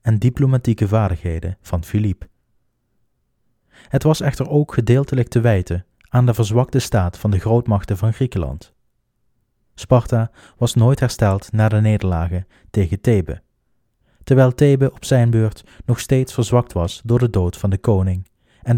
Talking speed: 145 wpm